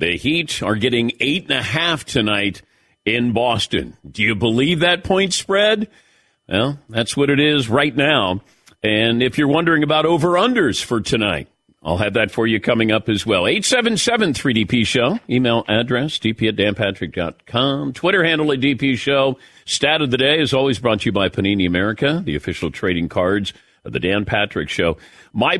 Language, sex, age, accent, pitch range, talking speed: English, male, 50-69, American, 105-140 Hz, 170 wpm